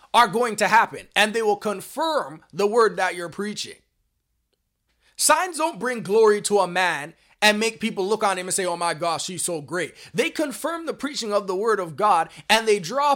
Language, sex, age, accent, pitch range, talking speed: English, male, 20-39, American, 175-235 Hz, 210 wpm